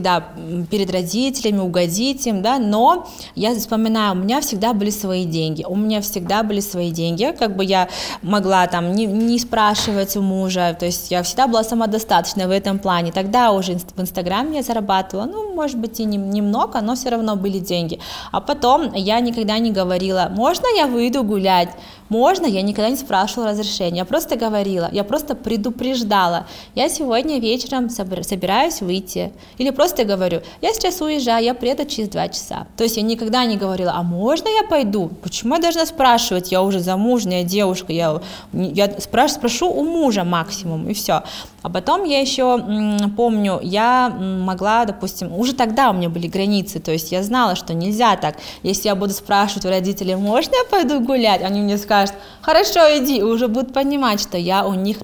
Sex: female